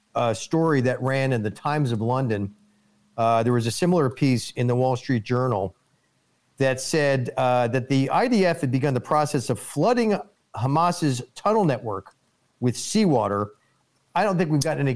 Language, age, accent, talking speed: English, 40-59, American, 175 wpm